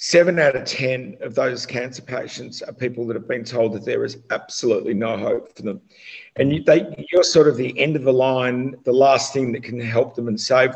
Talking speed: 225 wpm